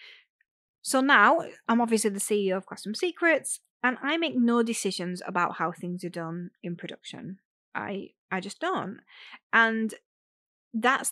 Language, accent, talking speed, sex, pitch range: English, British, 145 wpm, female, 200-270 Hz